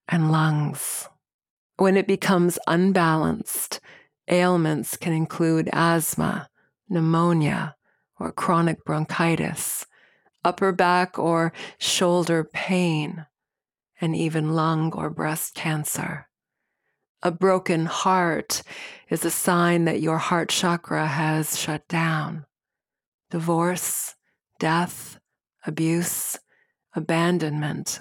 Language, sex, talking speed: English, female, 90 wpm